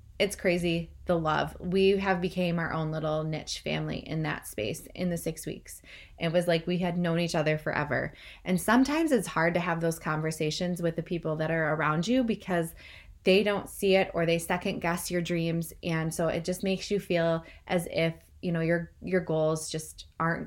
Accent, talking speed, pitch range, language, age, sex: American, 205 wpm, 165-190 Hz, English, 20-39, female